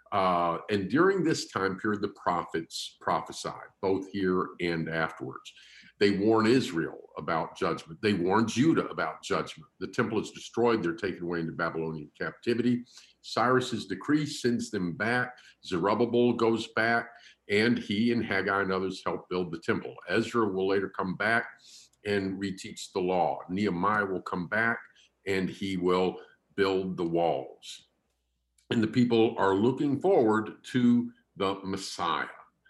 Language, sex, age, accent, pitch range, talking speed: English, male, 50-69, American, 85-115 Hz, 145 wpm